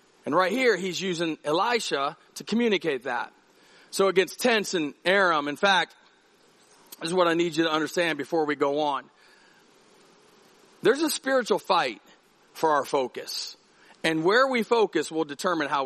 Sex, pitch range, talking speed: male, 170-235 Hz, 165 wpm